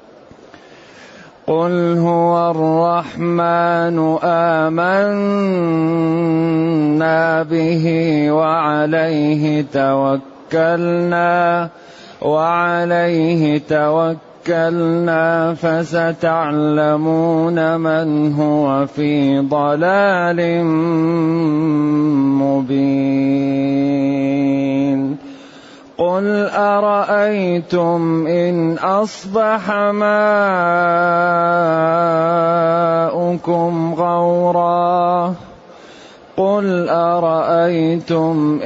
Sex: male